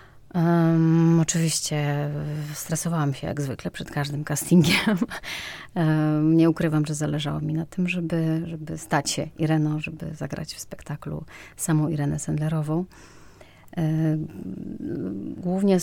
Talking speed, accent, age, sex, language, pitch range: 105 wpm, native, 30-49, female, Polish, 150-170 Hz